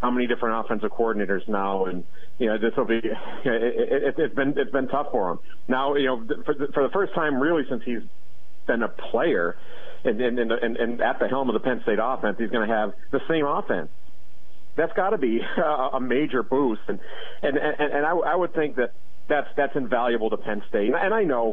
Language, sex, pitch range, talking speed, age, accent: English, male, 110-140 Hz, 230 wpm, 40-59, American